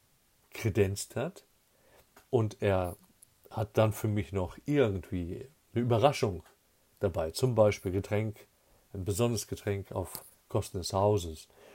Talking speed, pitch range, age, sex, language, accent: 115 wpm, 95-130 Hz, 50-69, male, German, German